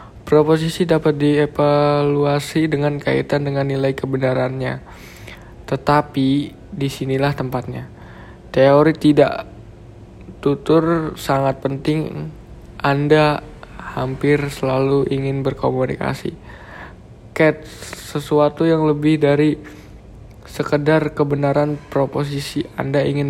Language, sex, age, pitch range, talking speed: Indonesian, male, 20-39, 130-150 Hz, 80 wpm